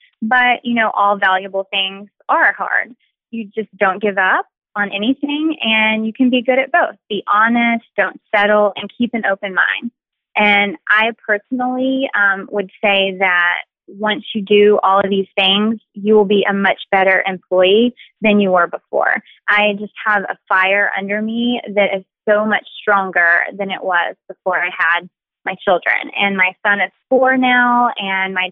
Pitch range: 195-235 Hz